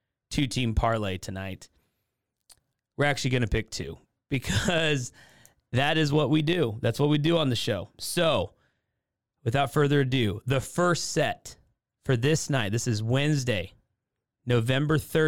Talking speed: 145 wpm